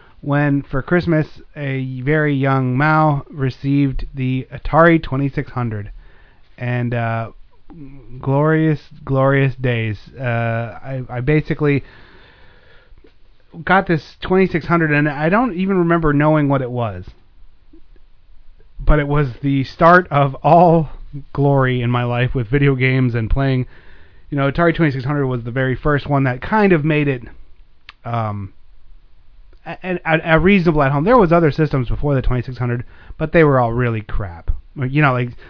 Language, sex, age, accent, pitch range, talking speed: English, male, 30-49, American, 120-150 Hz, 140 wpm